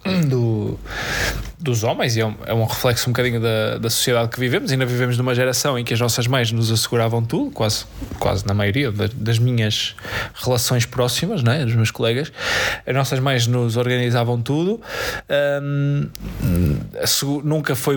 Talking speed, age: 150 wpm, 20-39